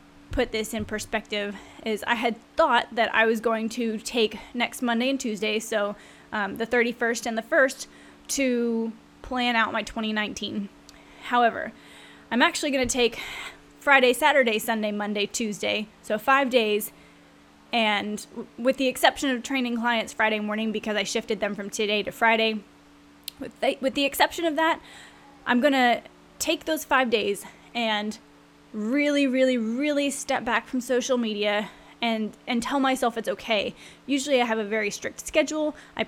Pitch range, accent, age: 220-265 Hz, American, 10-29